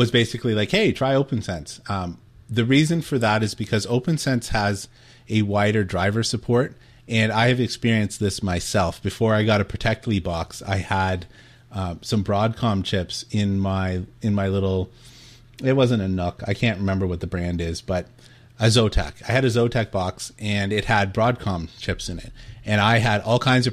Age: 30-49